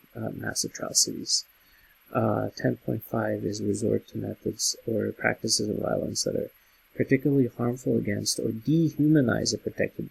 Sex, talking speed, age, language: male, 130 wpm, 30-49, English